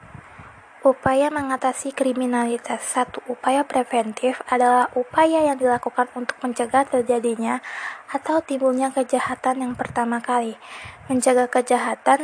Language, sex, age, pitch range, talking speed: Indonesian, female, 20-39, 230-260 Hz, 105 wpm